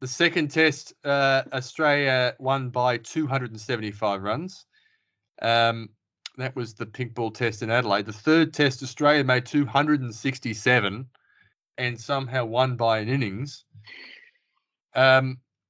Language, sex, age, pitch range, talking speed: English, male, 20-39, 115-140 Hz, 120 wpm